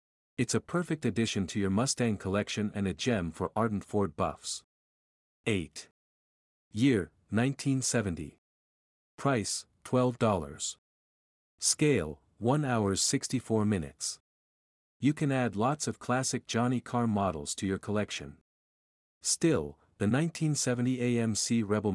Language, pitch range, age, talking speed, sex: English, 90-125 Hz, 50-69, 115 wpm, male